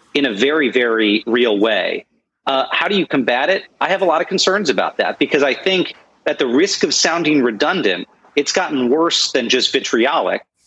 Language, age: English, 40-59